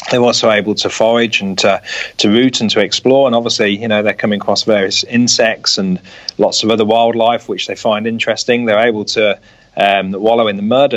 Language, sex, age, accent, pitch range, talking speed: English, male, 30-49, British, 100-115 Hz, 210 wpm